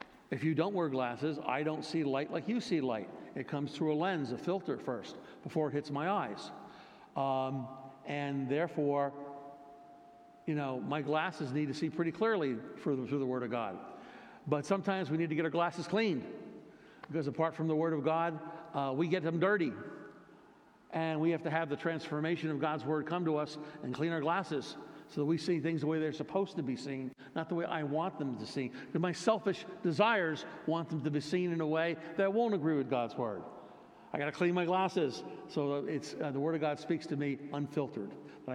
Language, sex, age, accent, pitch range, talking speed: English, male, 60-79, American, 140-165 Hz, 210 wpm